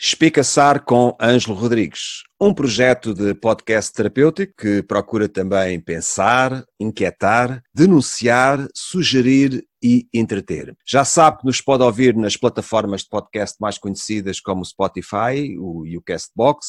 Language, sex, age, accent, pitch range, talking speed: Portuguese, male, 40-59, Portuguese, 100-130 Hz, 130 wpm